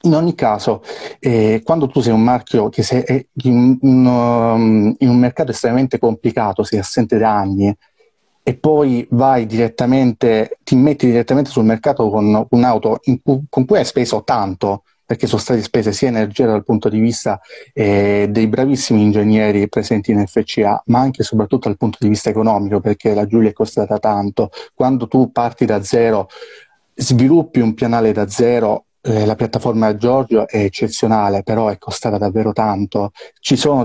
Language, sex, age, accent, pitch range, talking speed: Italian, male, 30-49, native, 110-125 Hz, 165 wpm